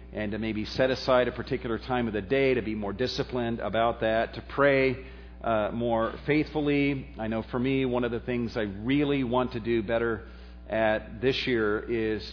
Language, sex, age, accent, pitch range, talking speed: English, male, 40-59, American, 105-130 Hz, 195 wpm